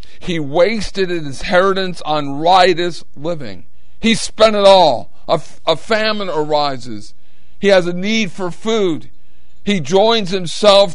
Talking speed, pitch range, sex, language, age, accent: 130 wpm, 160-205 Hz, male, English, 50-69, American